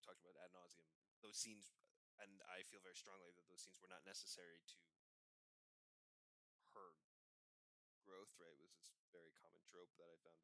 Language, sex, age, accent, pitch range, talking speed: English, male, 20-39, American, 90-105 Hz, 170 wpm